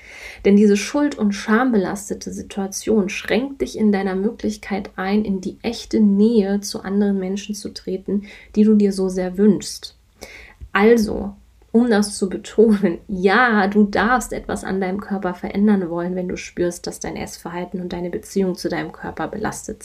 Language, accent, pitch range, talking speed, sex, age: German, German, 190-220 Hz, 165 wpm, female, 30-49